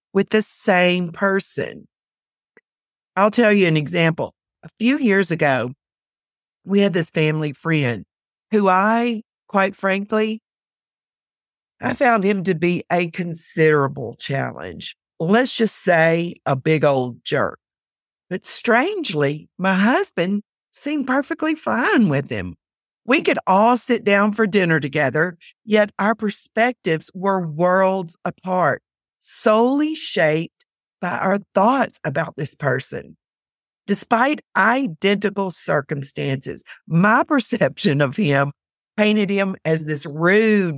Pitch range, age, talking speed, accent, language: 160-220 Hz, 40-59, 120 wpm, American, English